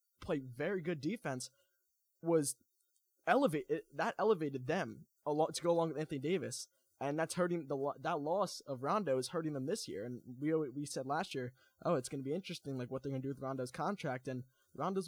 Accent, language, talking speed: American, English, 210 wpm